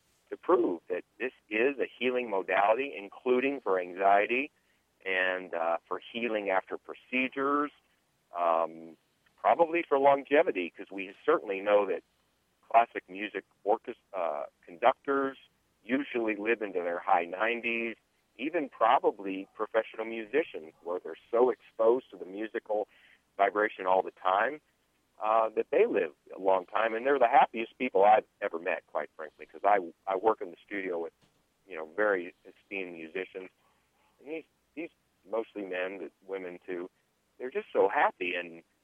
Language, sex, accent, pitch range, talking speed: English, male, American, 95-135 Hz, 140 wpm